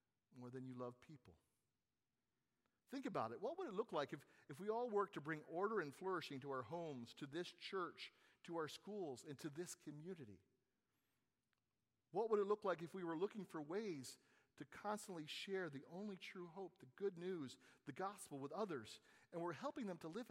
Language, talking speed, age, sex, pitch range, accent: English, 200 wpm, 40-59, male, 125-190 Hz, American